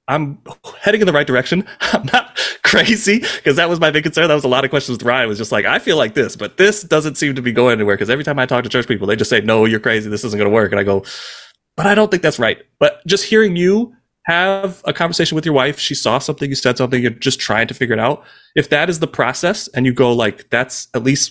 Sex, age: male, 30-49